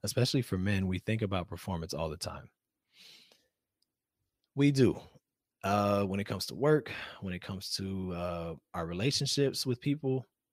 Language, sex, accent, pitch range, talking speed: English, male, American, 90-105 Hz, 155 wpm